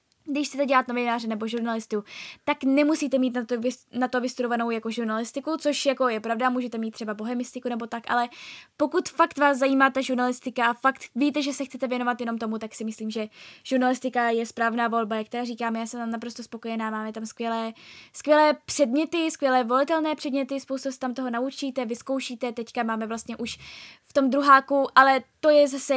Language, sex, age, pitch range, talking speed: Czech, female, 10-29, 235-270 Hz, 190 wpm